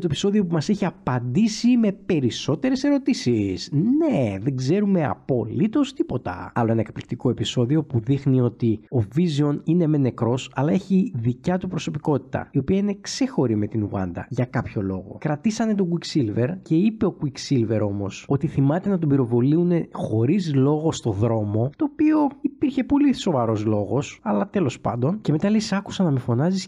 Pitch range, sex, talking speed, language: 120-180 Hz, male, 165 wpm, Greek